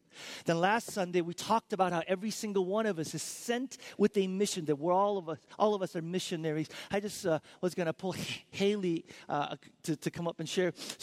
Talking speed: 235 wpm